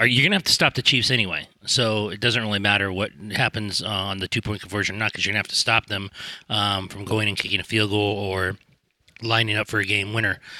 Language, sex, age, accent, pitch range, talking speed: English, male, 30-49, American, 105-125 Hz, 260 wpm